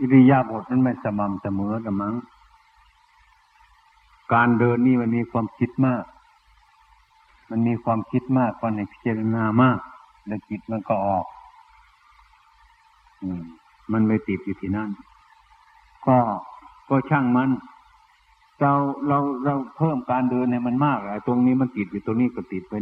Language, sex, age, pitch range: Thai, male, 60-79, 105-130 Hz